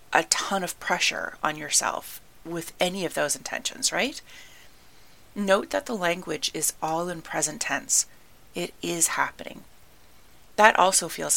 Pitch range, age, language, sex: 165-230 Hz, 30-49, English, female